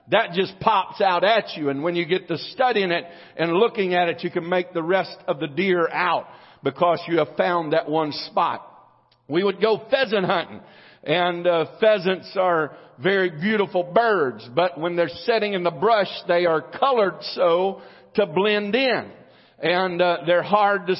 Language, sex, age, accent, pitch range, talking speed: English, male, 50-69, American, 175-220 Hz, 185 wpm